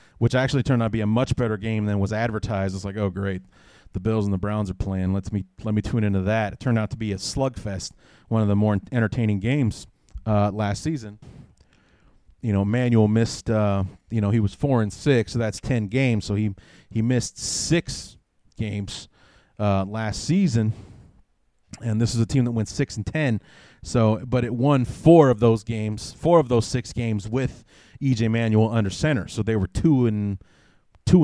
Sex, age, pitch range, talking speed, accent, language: male, 30-49, 100-125 Hz, 205 wpm, American, English